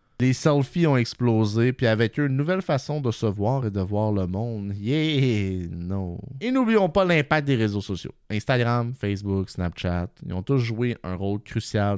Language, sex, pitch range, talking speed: French, male, 95-140 Hz, 185 wpm